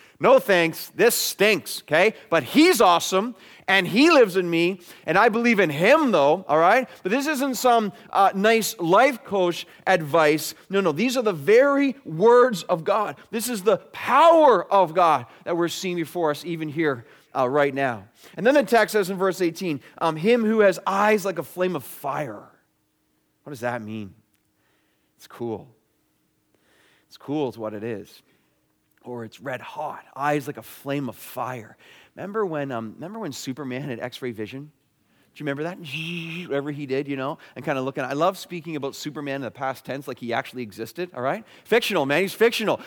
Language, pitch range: English, 145-220 Hz